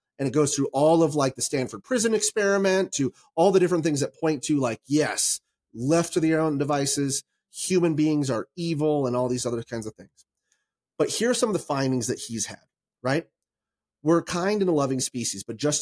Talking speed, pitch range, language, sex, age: 215 wpm, 130-175 Hz, English, male, 30-49